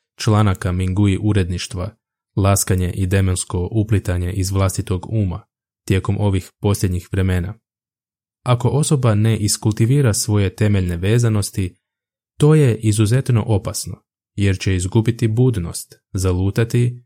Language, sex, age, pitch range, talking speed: Croatian, male, 20-39, 95-115 Hz, 105 wpm